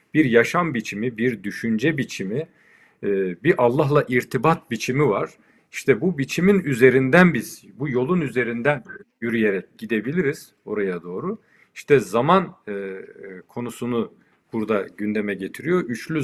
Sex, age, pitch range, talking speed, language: male, 50-69, 110-170 Hz, 110 wpm, Turkish